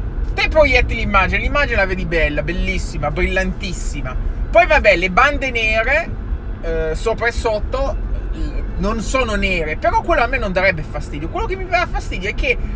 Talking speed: 170 wpm